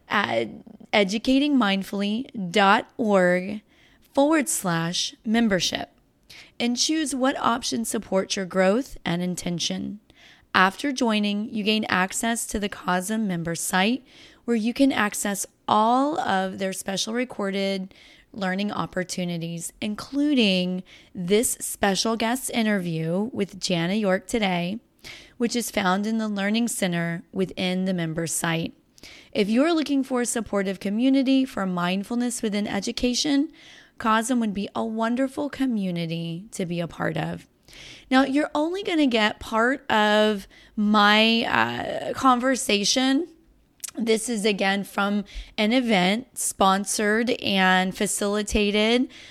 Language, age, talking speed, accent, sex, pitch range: English, 30-49, 120 wpm, American, female, 195-255 Hz